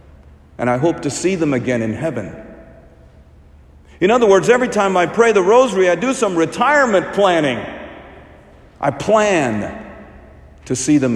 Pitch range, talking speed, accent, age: 120-170 Hz, 150 wpm, American, 50-69